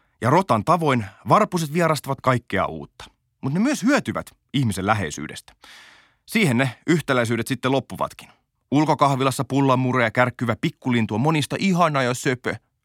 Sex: male